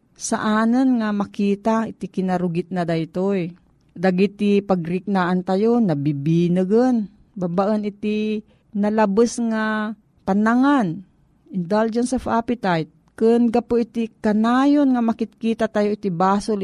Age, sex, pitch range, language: 40-59, female, 175-225 Hz, Filipino